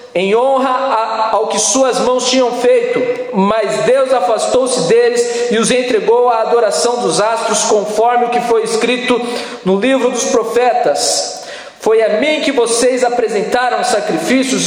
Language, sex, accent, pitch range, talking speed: Portuguese, male, Brazilian, 195-255 Hz, 145 wpm